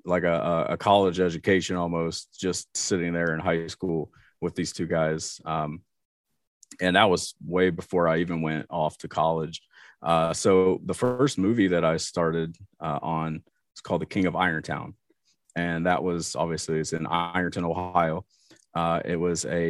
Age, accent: 30-49, American